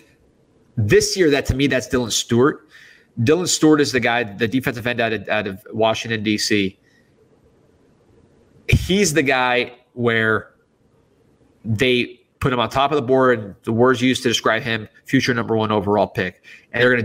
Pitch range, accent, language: 105-125 Hz, American, English